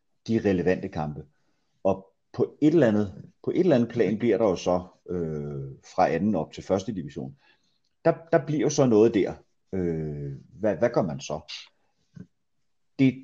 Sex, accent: male, native